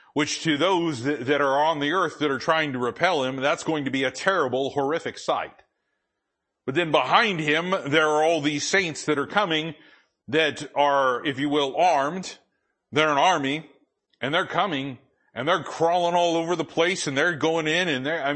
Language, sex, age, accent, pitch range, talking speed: English, male, 40-59, American, 135-160 Hz, 195 wpm